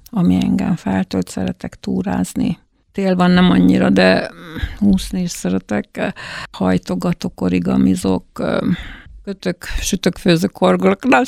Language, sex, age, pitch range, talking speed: Hungarian, female, 60-79, 160-200 Hz, 100 wpm